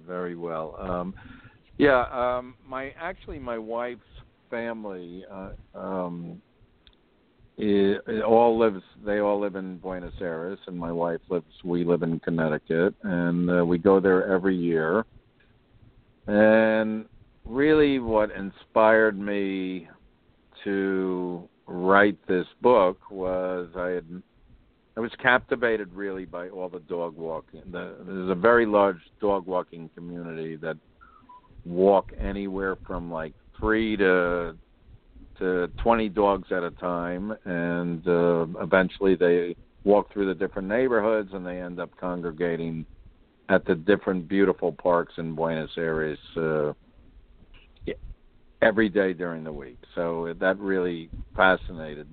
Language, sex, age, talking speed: English, male, 50-69, 130 wpm